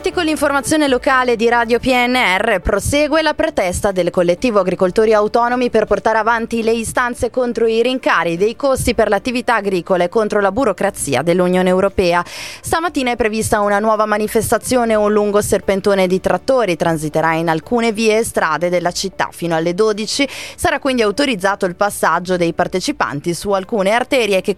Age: 20-39